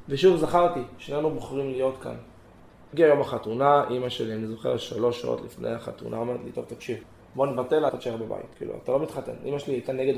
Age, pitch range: 20-39, 115-140 Hz